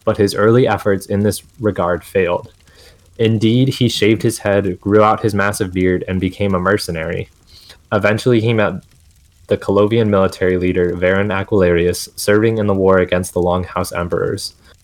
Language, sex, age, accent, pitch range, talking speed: English, male, 20-39, American, 90-105 Hz, 160 wpm